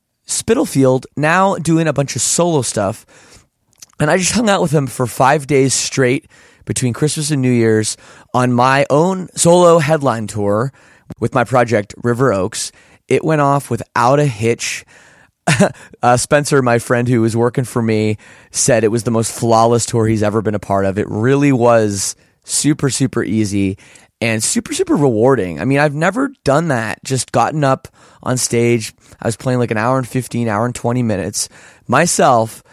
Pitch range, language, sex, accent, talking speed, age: 115-145 Hz, English, male, American, 180 wpm, 30-49